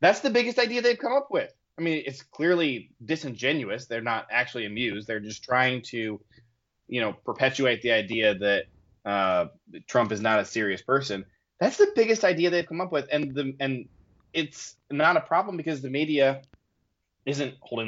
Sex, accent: male, American